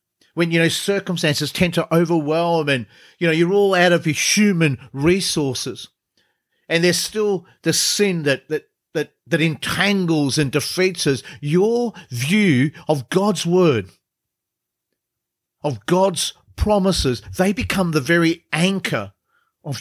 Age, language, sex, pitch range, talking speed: 50-69, English, male, 135-185 Hz, 135 wpm